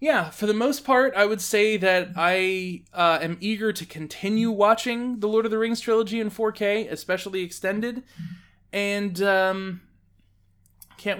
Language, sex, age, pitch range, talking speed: English, male, 20-39, 165-205 Hz, 155 wpm